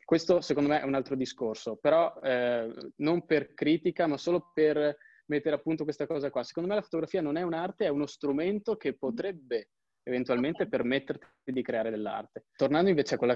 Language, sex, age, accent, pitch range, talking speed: Italian, male, 20-39, native, 110-135 Hz, 190 wpm